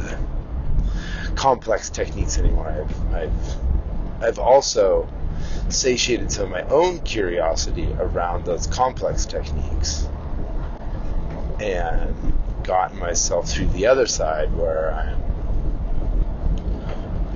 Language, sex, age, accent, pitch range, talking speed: English, male, 30-49, American, 75-105 Hz, 90 wpm